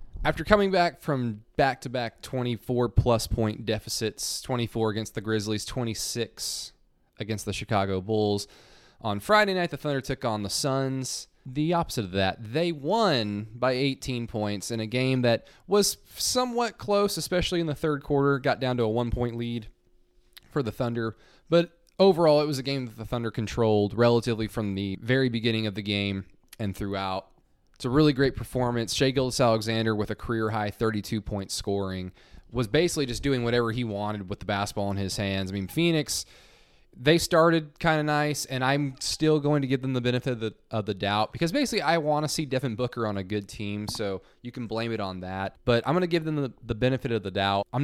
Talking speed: 195 wpm